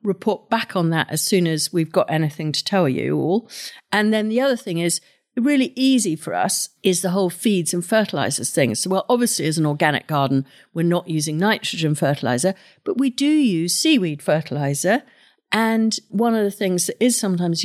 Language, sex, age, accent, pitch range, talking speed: English, female, 50-69, British, 170-215 Hz, 195 wpm